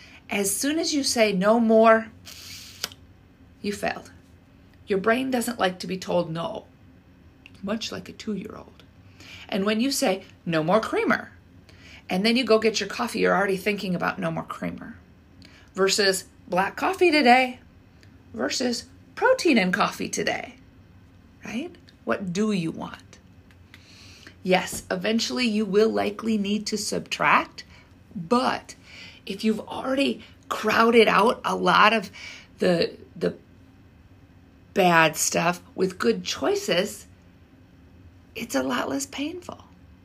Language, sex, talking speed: English, female, 125 wpm